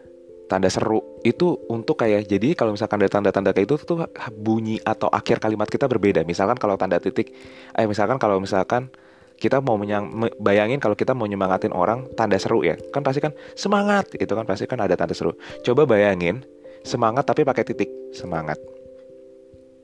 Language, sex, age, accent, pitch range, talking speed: Indonesian, male, 20-39, native, 90-120 Hz, 170 wpm